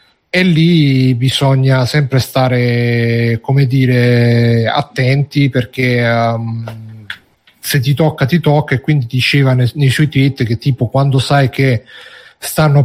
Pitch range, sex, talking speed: 125-145 Hz, male, 115 wpm